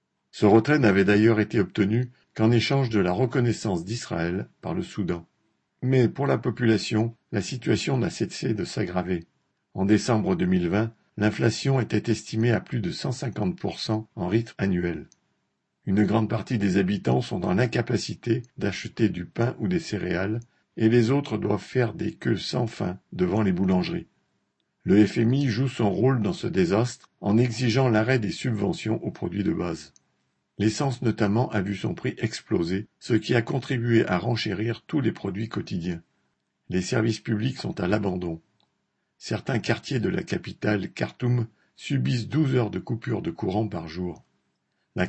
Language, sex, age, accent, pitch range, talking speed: French, male, 60-79, French, 95-115 Hz, 160 wpm